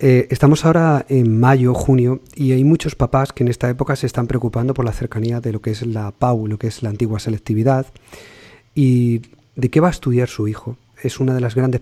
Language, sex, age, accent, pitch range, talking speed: Spanish, male, 40-59, Spanish, 115-135 Hz, 230 wpm